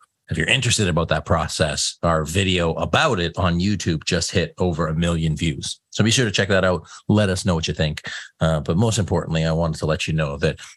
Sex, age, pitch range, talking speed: male, 40-59, 80-95 Hz, 235 wpm